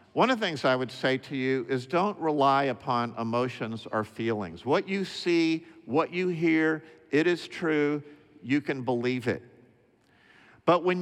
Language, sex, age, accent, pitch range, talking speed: English, male, 50-69, American, 130-170 Hz, 170 wpm